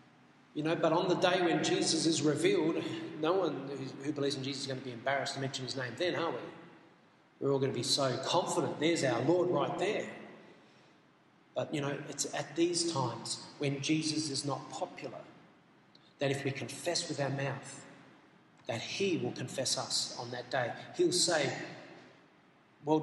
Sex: male